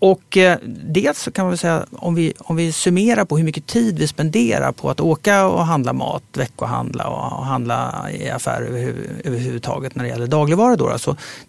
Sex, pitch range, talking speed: male, 130-180 Hz, 195 wpm